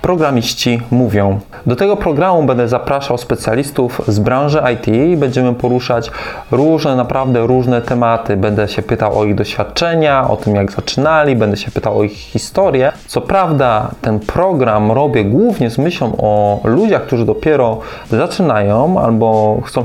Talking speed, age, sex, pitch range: 145 wpm, 20-39, male, 110-135 Hz